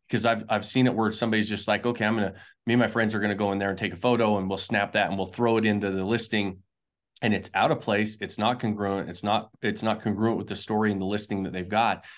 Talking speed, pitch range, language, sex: 285 wpm, 95-115 Hz, English, male